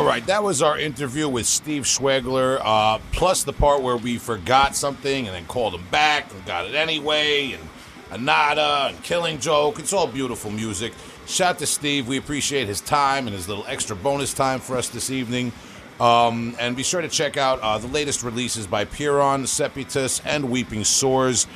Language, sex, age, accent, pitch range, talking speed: English, male, 40-59, American, 110-135 Hz, 190 wpm